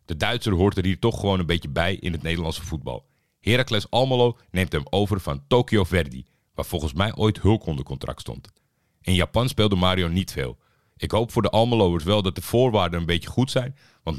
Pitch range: 85-110 Hz